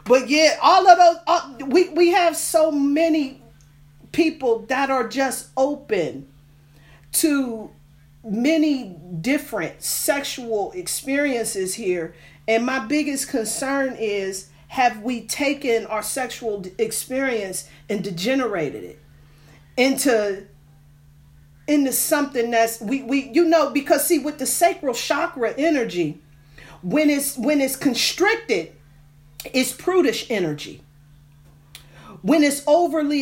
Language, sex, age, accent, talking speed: English, female, 40-59, American, 110 wpm